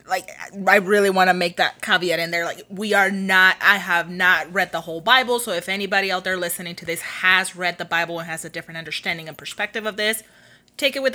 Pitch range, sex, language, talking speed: 170-205 Hz, female, English, 240 wpm